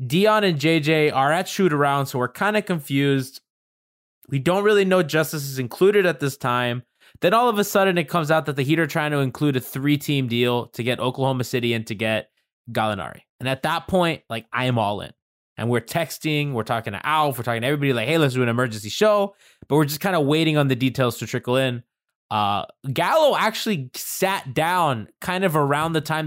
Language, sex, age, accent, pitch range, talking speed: English, male, 20-39, American, 120-165 Hz, 220 wpm